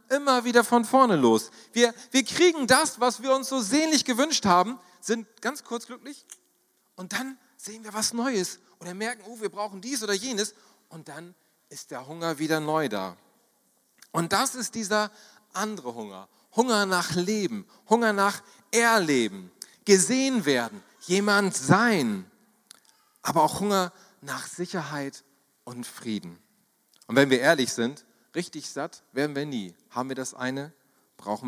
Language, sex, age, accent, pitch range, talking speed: German, male, 40-59, German, 150-225 Hz, 155 wpm